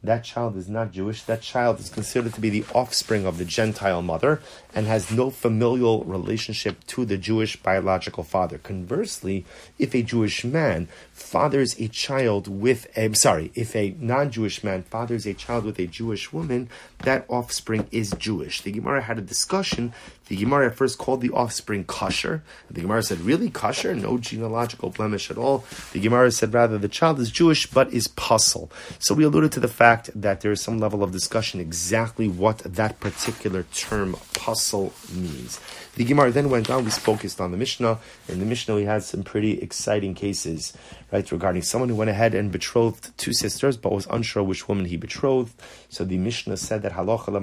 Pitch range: 100-120 Hz